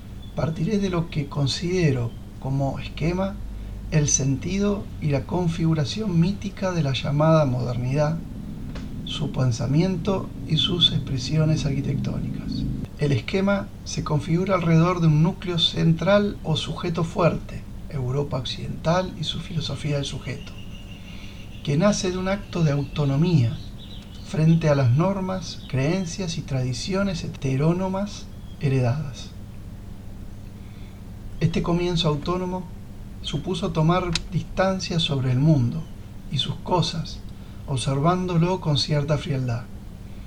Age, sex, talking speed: 40-59, male, 110 wpm